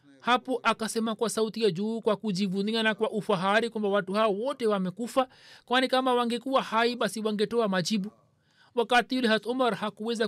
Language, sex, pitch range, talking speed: Swahili, male, 195-235 Hz, 160 wpm